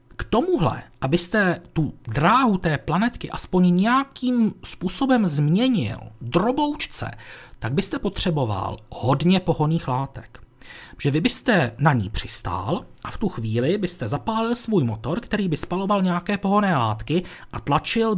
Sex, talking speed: male, 130 wpm